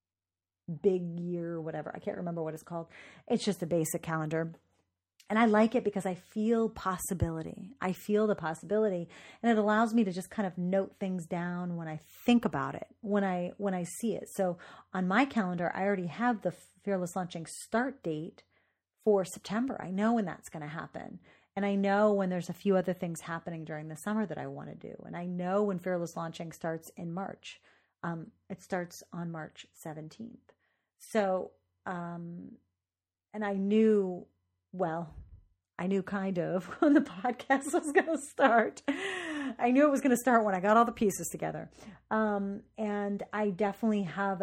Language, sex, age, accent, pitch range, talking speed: English, female, 30-49, American, 170-210 Hz, 185 wpm